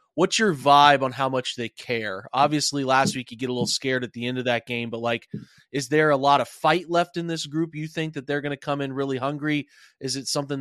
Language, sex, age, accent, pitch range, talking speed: English, male, 30-49, American, 130-150 Hz, 265 wpm